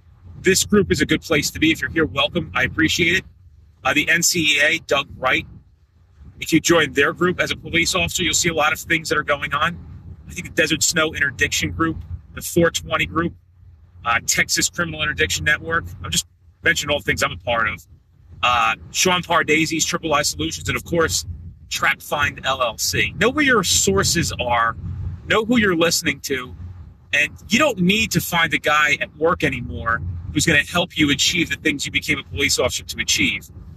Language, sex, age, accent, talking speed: English, male, 30-49, American, 195 wpm